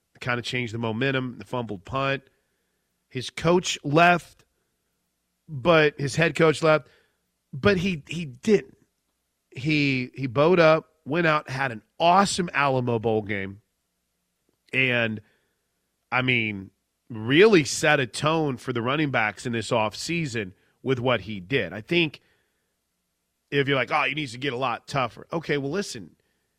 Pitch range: 110-155 Hz